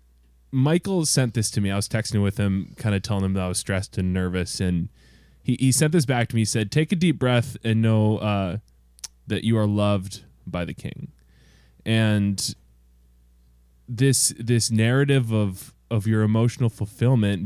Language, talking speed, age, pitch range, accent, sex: English, 180 wpm, 20-39, 90-115 Hz, American, male